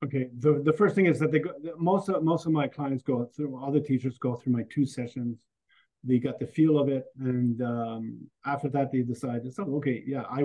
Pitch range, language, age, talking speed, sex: 130-155 Hz, English, 40-59, 230 wpm, male